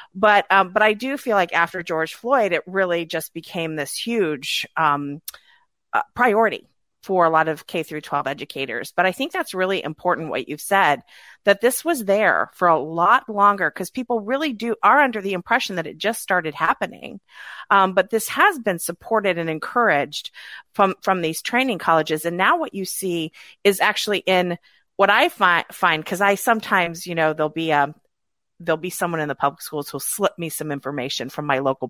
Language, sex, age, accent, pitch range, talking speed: English, female, 40-59, American, 150-200 Hz, 195 wpm